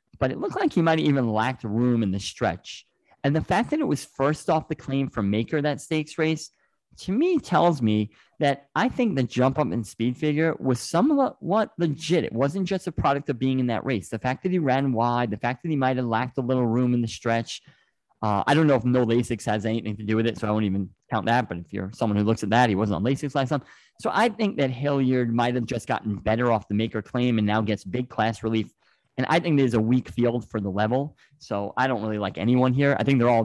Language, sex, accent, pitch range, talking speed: English, male, American, 110-145 Hz, 260 wpm